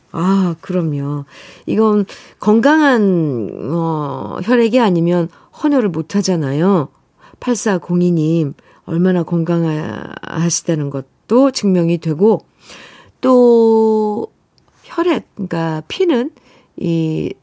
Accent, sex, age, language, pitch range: native, female, 50-69, Korean, 160-225 Hz